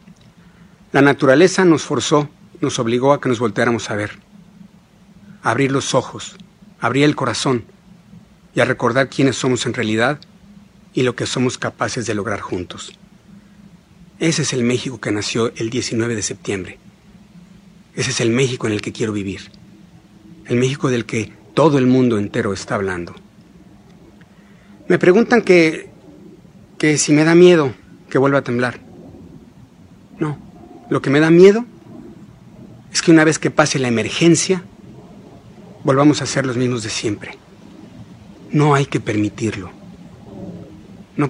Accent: Mexican